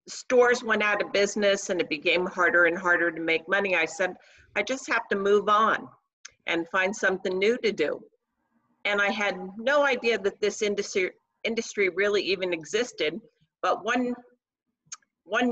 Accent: American